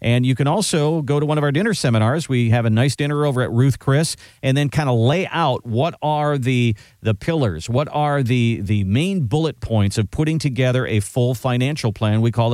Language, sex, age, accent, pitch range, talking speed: English, male, 50-69, American, 110-150 Hz, 225 wpm